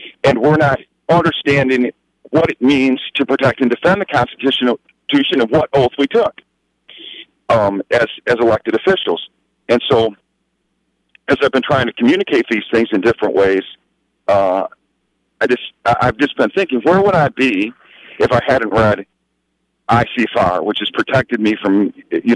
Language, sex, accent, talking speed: English, male, American, 155 wpm